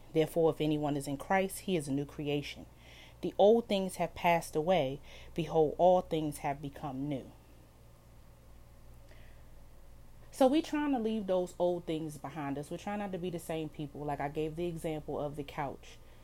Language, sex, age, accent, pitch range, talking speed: English, female, 30-49, American, 140-195 Hz, 180 wpm